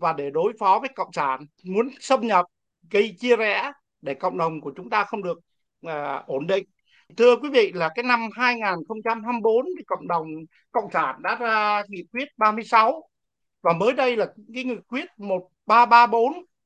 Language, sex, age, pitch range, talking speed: Vietnamese, male, 60-79, 185-250 Hz, 175 wpm